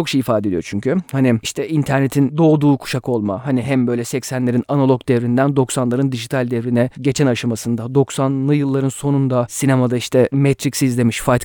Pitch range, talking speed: 125-160 Hz, 155 wpm